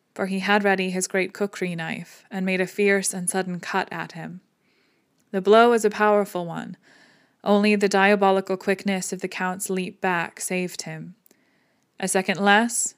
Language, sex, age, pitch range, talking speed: English, female, 20-39, 185-205 Hz, 170 wpm